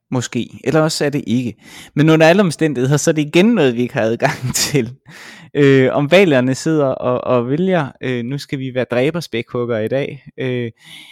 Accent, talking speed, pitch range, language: native, 195 wpm, 115-150 Hz, Danish